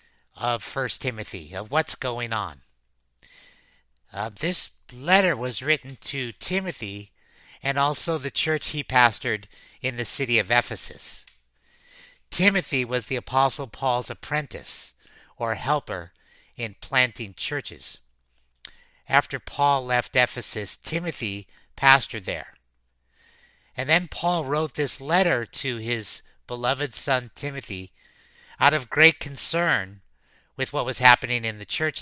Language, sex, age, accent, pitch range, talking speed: English, male, 50-69, American, 110-145 Hz, 120 wpm